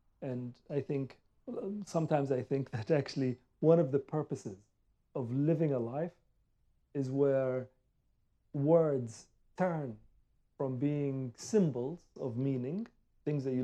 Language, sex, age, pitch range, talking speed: English, male, 40-59, 120-150 Hz, 125 wpm